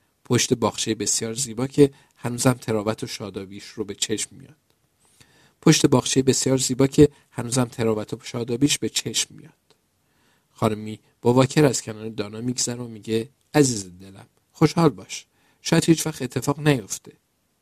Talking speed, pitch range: 145 wpm, 110-140 Hz